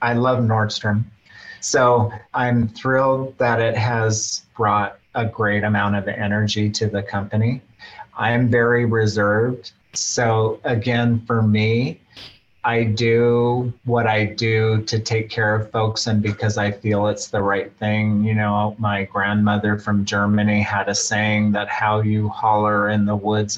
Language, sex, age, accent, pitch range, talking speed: English, male, 30-49, American, 105-115 Hz, 155 wpm